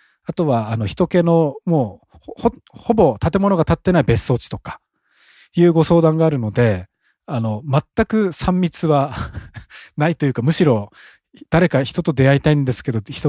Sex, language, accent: male, Japanese, native